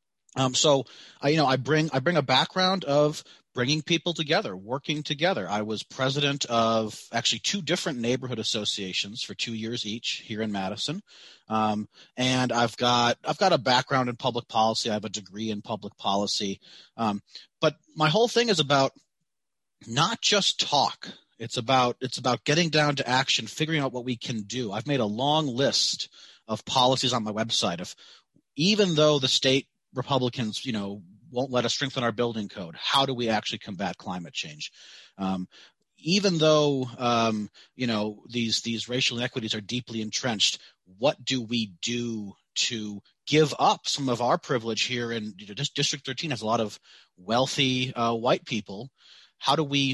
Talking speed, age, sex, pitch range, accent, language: 180 wpm, 30-49, male, 110-140 Hz, American, English